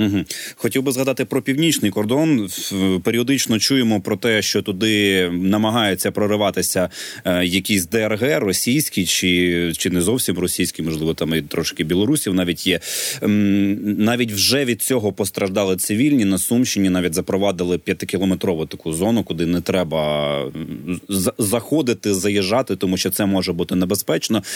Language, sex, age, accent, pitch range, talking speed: Ukrainian, male, 30-49, native, 95-115 Hz, 130 wpm